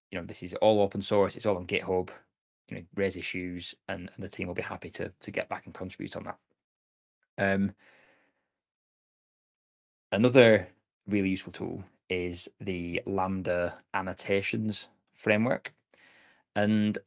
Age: 20-39